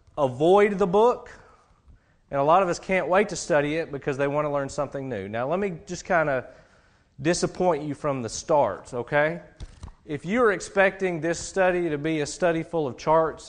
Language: English